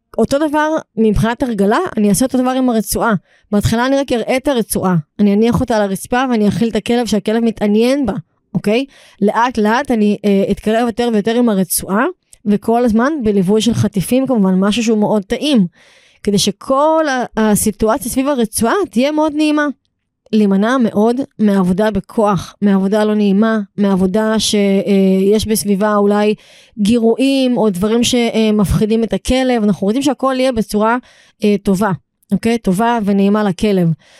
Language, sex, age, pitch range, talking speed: Hebrew, female, 20-39, 205-255 Hz, 145 wpm